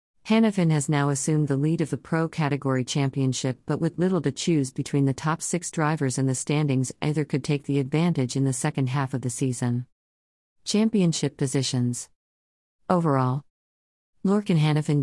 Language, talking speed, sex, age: English, 165 wpm, female, 40-59